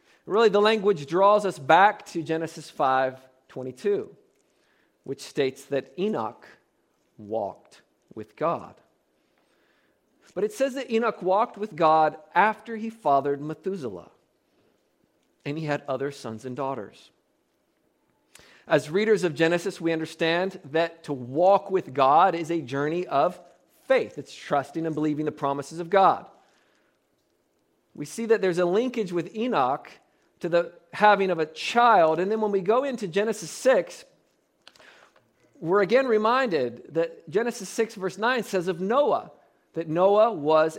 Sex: male